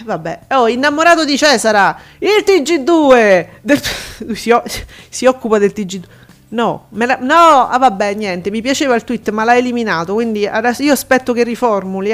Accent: native